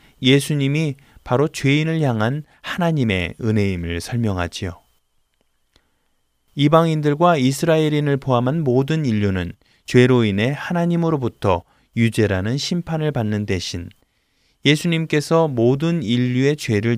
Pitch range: 100-145 Hz